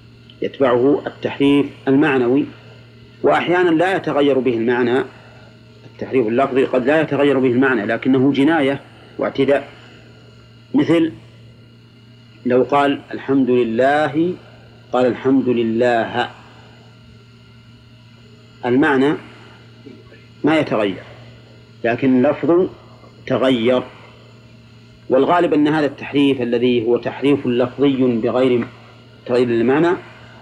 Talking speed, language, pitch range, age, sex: 85 wpm, Arabic, 115-140 Hz, 50-69, male